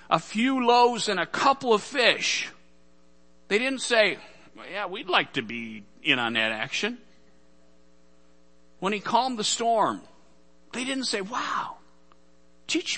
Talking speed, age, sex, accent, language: 140 wpm, 60-79, male, American, English